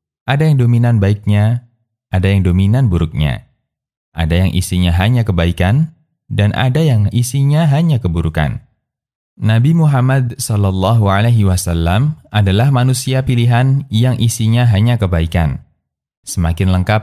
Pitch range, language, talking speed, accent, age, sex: 95-125 Hz, Indonesian, 115 wpm, native, 20-39, male